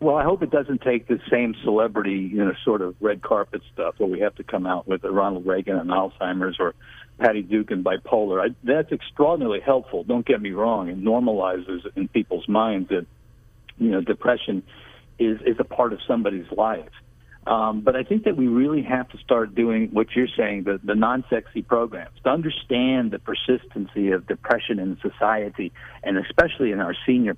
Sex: male